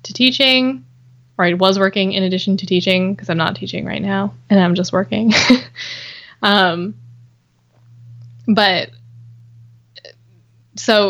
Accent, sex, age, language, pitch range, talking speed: American, female, 10-29, English, 180-225 Hz, 125 wpm